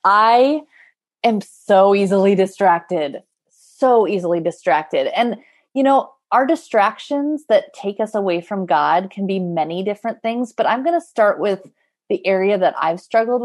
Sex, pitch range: female, 185-230 Hz